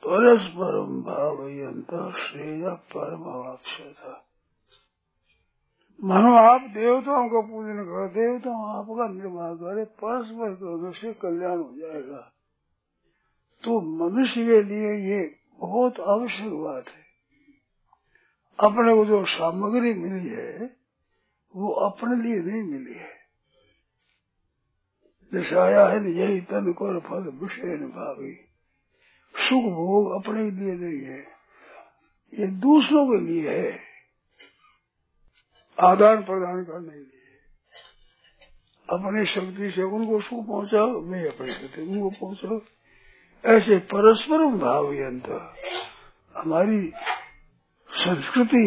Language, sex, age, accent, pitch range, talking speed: Hindi, male, 60-79, native, 180-225 Hz, 100 wpm